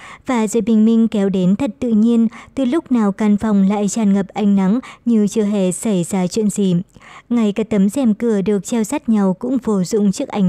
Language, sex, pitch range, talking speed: Vietnamese, male, 195-230 Hz, 230 wpm